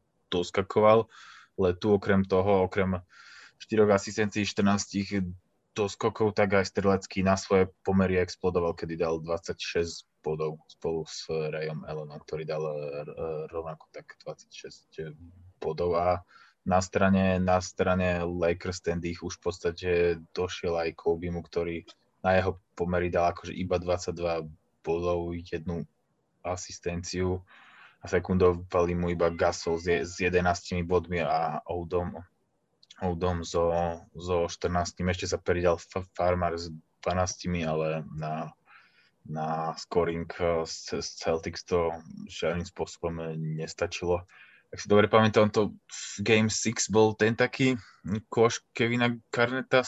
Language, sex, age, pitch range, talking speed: Slovak, male, 20-39, 85-100 Hz, 120 wpm